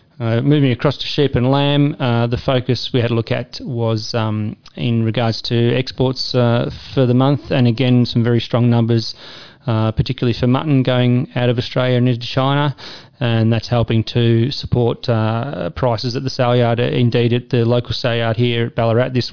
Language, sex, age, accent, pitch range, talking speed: English, male, 30-49, Australian, 115-130 Hz, 195 wpm